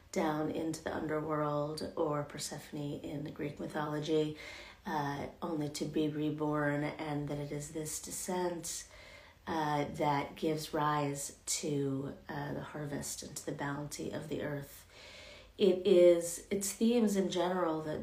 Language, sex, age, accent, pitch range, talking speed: English, female, 40-59, American, 150-165 Hz, 145 wpm